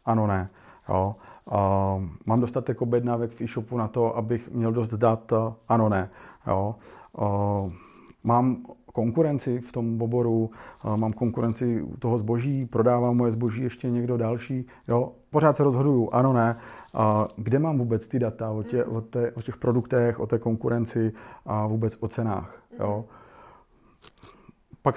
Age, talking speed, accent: 40-59, 145 wpm, native